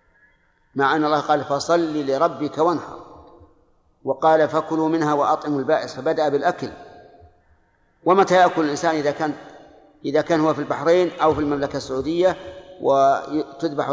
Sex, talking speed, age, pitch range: male, 125 wpm, 50-69, 135-160 Hz